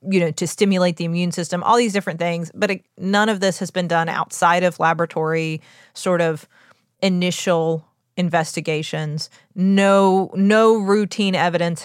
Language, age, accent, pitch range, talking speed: English, 30-49, American, 160-200 Hz, 145 wpm